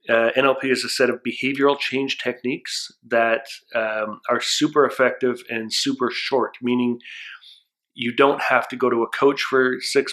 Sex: male